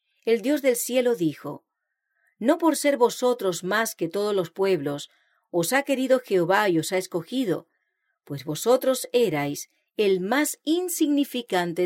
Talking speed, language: 140 wpm, English